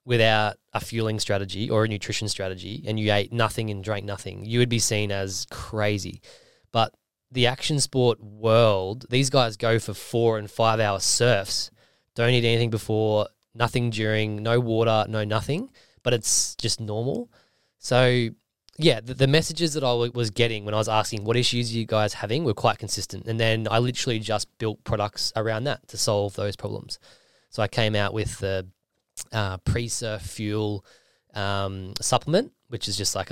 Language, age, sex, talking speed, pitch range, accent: English, 20-39, male, 180 wpm, 105-120 Hz, Australian